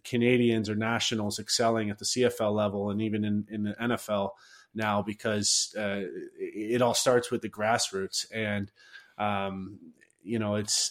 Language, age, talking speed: English, 30-49, 155 wpm